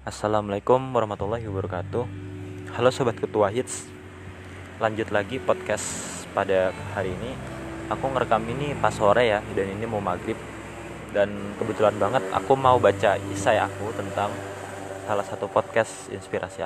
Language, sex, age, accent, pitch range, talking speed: Indonesian, male, 20-39, native, 95-115 Hz, 130 wpm